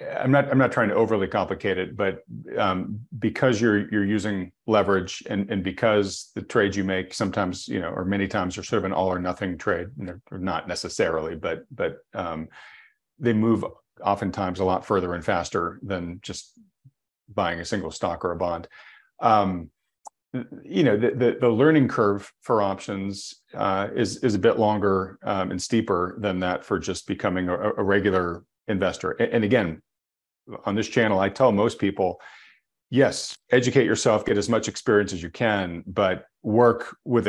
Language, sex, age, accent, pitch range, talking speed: English, male, 40-59, American, 95-115 Hz, 180 wpm